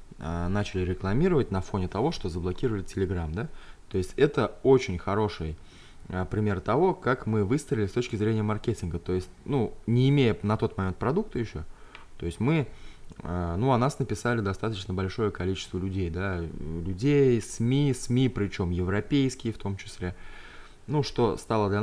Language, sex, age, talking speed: Russian, male, 20-39, 160 wpm